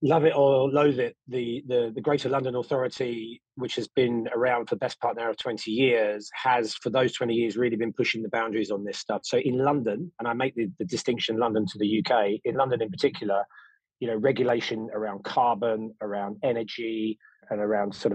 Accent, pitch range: British, 105-125 Hz